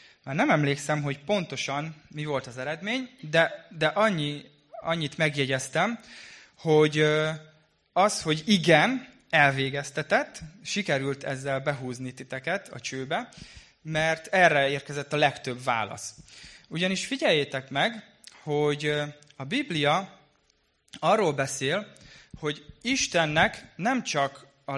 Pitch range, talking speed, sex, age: 130-170 Hz, 105 wpm, male, 20-39